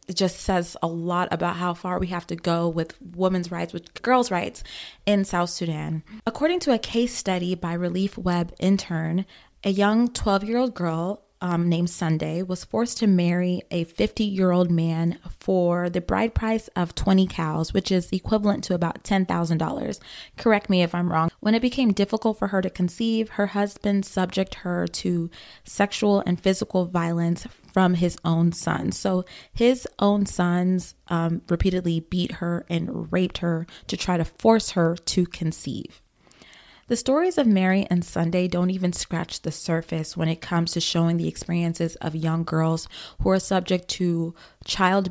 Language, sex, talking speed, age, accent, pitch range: English, female, 170 wpm, 20-39, American, 170-200 Hz